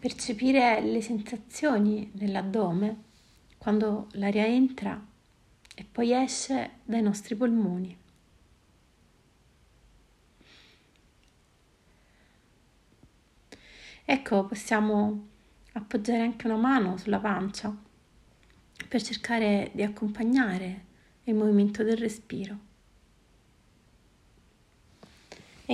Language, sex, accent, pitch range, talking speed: Italian, female, native, 205-235 Hz, 70 wpm